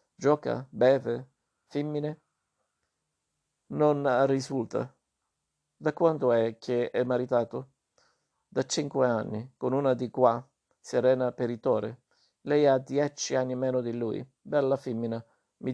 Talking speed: 115 wpm